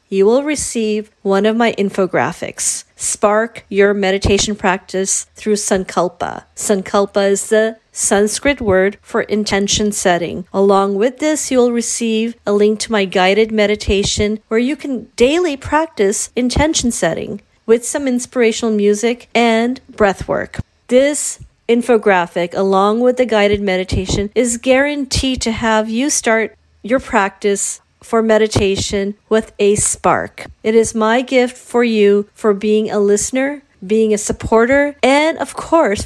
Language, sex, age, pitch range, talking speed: English, female, 40-59, 205-240 Hz, 140 wpm